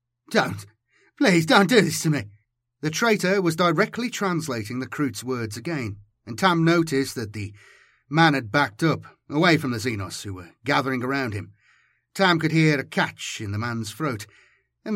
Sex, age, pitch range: male, 30-49, 115-165 Hz